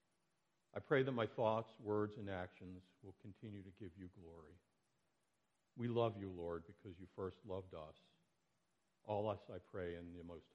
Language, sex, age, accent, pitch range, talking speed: English, male, 60-79, American, 95-120 Hz, 170 wpm